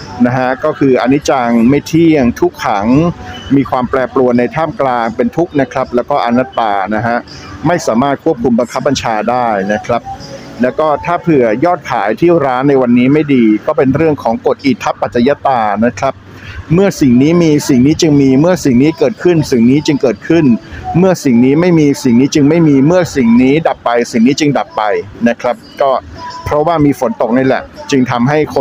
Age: 60-79